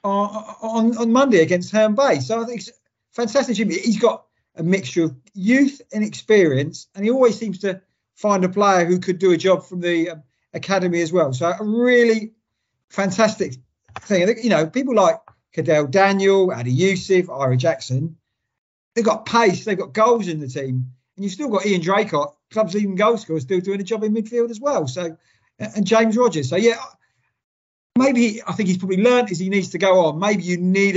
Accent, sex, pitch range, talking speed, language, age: British, male, 155-210 Hz, 200 wpm, English, 50-69